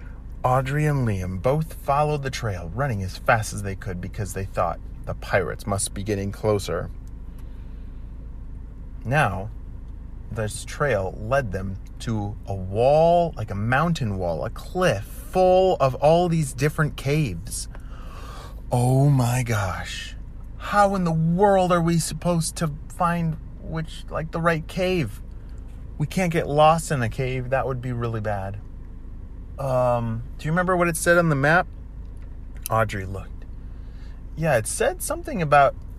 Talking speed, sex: 145 wpm, male